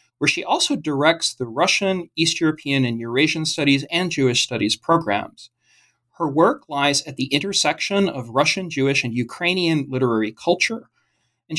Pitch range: 125-170 Hz